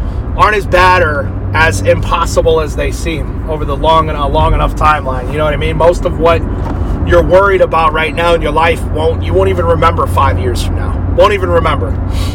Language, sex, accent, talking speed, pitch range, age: English, male, American, 220 wpm, 105-125 Hz, 30-49